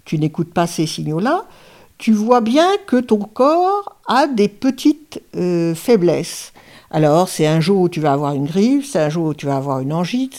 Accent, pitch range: French, 160-240 Hz